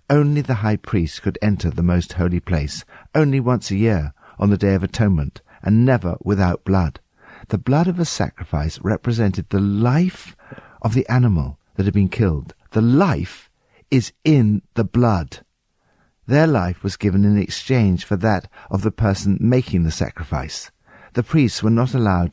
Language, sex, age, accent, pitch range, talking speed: English, male, 60-79, British, 90-125 Hz, 170 wpm